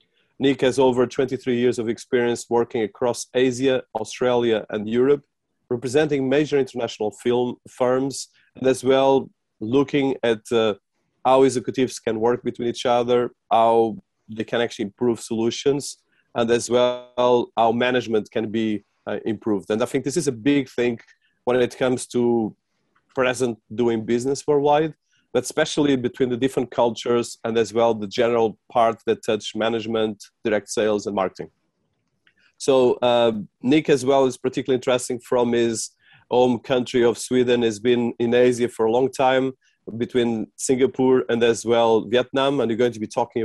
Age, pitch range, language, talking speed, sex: 30-49, 115-130 Hz, English, 160 wpm, male